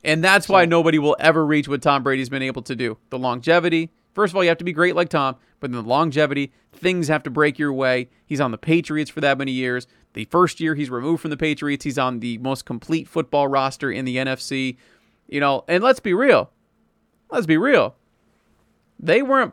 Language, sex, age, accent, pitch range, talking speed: English, male, 40-59, American, 135-170 Hz, 225 wpm